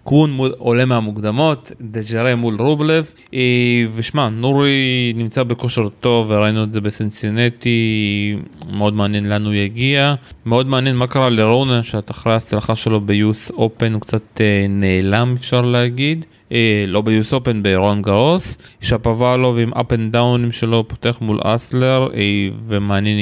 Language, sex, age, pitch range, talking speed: Hebrew, male, 30-49, 105-120 Hz, 135 wpm